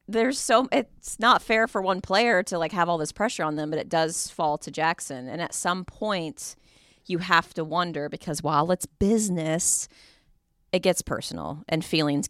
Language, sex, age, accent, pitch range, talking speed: English, female, 30-49, American, 145-185 Hz, 190 wpm